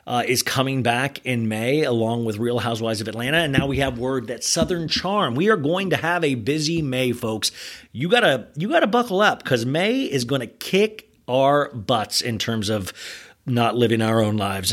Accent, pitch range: American, 115-160 Hz